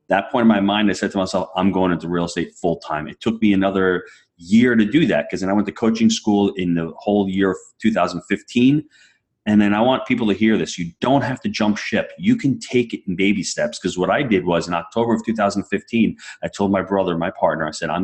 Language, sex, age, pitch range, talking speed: English, male, 30-49, 90-110 Hz, 255 wpm